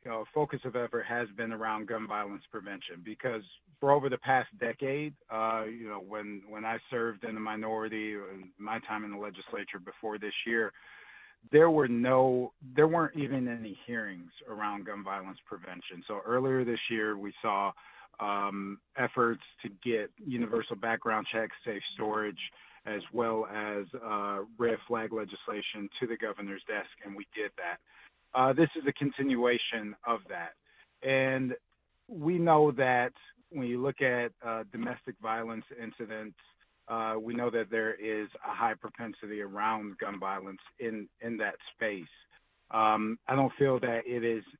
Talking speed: 160 wpm